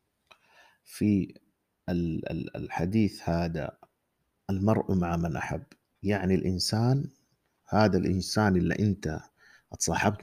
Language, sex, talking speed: Arabic, male, 80 wpm